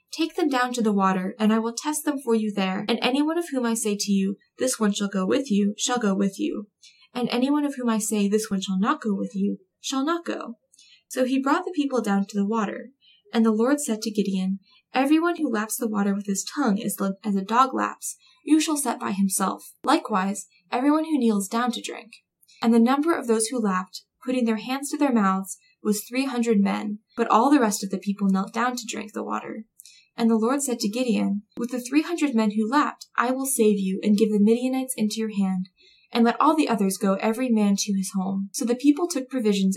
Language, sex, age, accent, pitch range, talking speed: English, female, 10-29, American, 200-255 Hz, 235 wpm